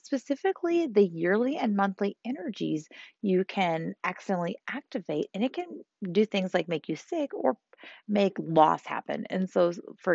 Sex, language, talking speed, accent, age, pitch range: female, English, 155 wpm, American, 30-49, 170-255 Hz